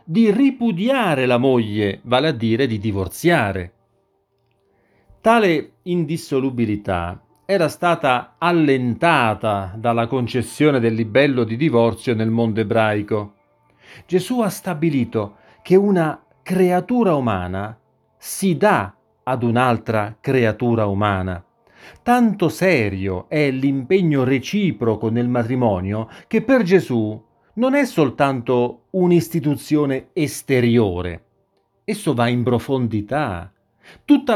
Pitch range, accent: 110-175 Hz, native